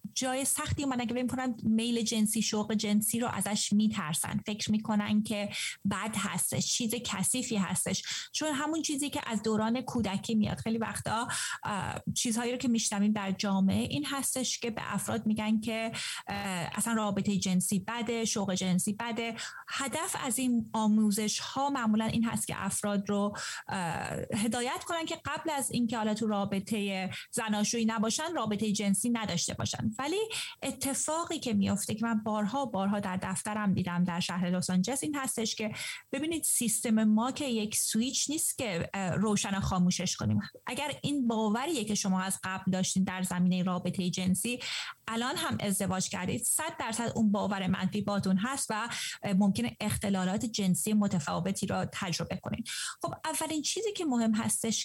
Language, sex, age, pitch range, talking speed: Persian, female, 30-49, 200-245 Hz, 150 wpm